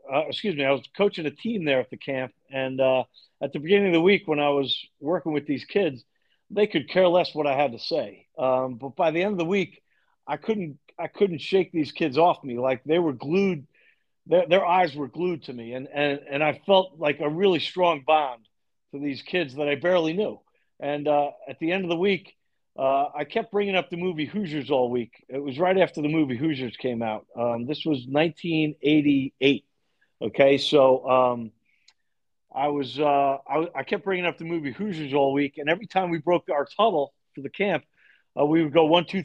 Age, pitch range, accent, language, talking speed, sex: 50-69, 135-175 Hz, American, English, 220 wpm, male